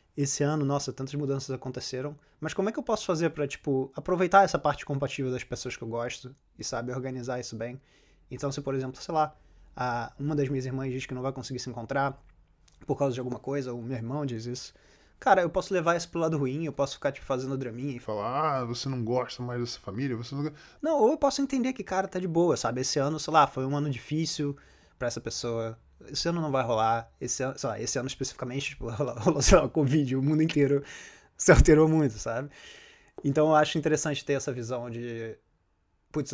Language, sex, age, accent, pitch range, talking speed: Portuguese, male, 20-39, Brazilian, 125-150 Hz, 230 wpm